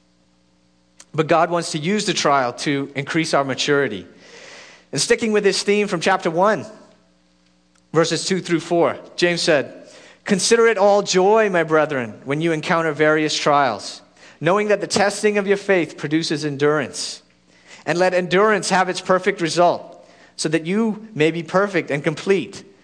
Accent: American